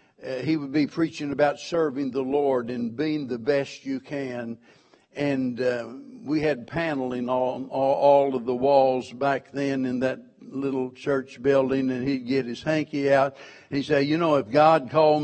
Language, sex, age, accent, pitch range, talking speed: English, male, 60-79, American, 135-165 Hz, 185 wpm